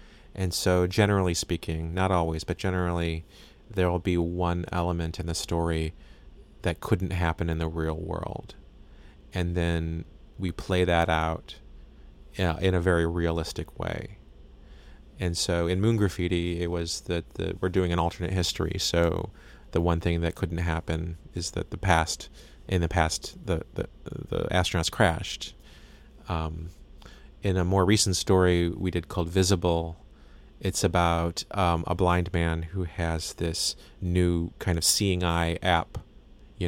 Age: 30-49